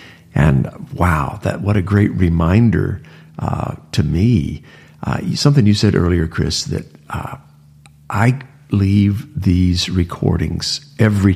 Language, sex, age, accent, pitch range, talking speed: English, male, 50-69, American, 90-115 Hz, 120 wpm